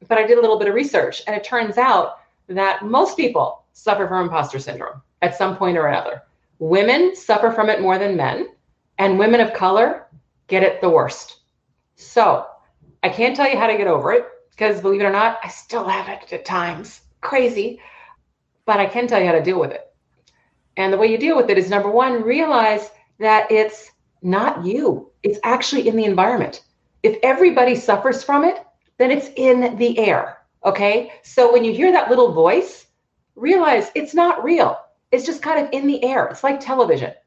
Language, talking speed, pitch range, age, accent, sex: English, 200 wpm, 210-350 Hz, 40-59, American, female